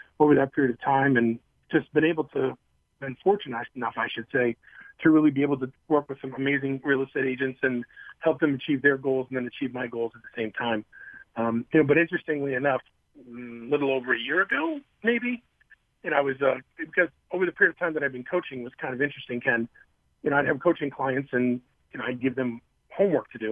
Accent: American